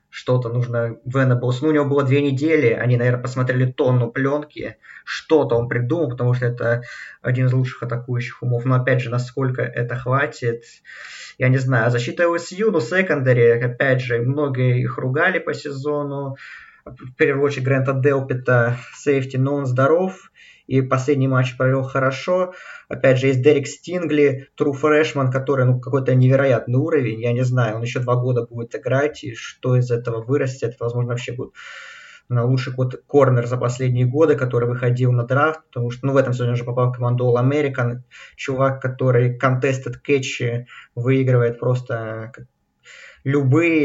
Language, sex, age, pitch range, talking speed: Russian, male, 20-39, 125-140 Hz, 165 wpm